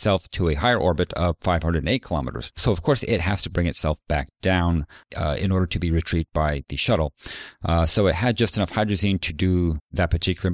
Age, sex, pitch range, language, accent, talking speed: 40-59, male, 80-95 Hz, English, American, 215 wpm